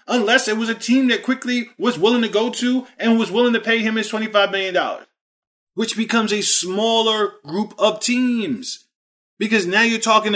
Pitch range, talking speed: 205-250 Hz, 185 wpm